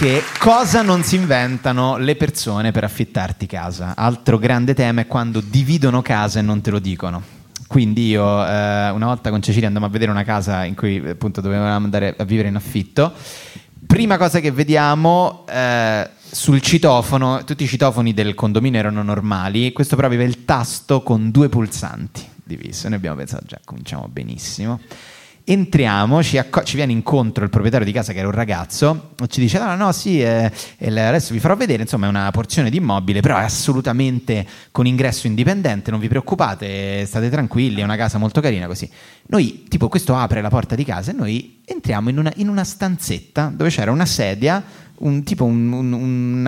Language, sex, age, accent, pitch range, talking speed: Italian, male, 20-39, native, 105-140 Hz, 185 wpm